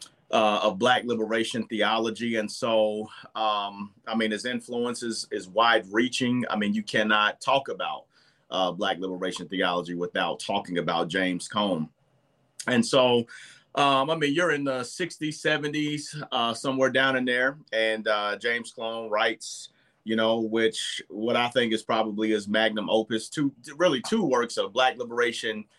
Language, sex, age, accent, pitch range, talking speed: English, male, 30-49, American, 110-135 Hz, 165 wpm